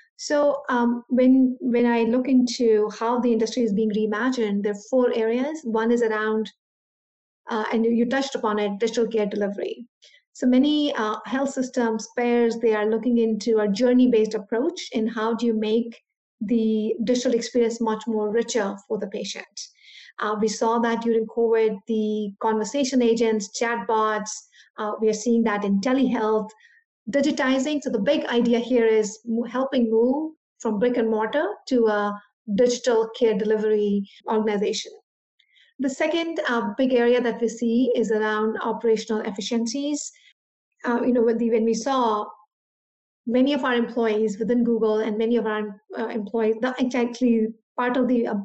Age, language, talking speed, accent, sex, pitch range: 50-69, English, 160 wpm, Indian, female, 220-250 Hz